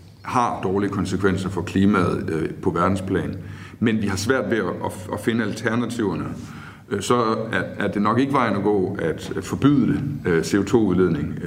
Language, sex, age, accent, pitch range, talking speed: Danish, male, 60-79, native, 95-125 Hz, 135 wpm